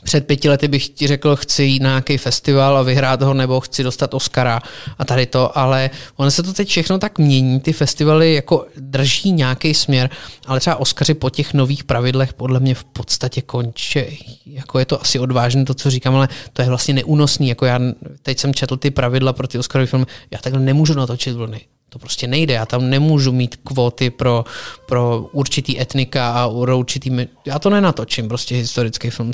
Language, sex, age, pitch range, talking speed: Czech, male, 20-39, 125-145 Hz, 195 wpm